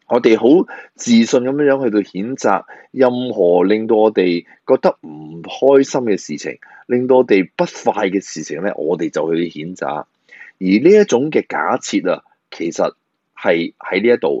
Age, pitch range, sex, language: 20-39, 100-155 Hz, male, Chinese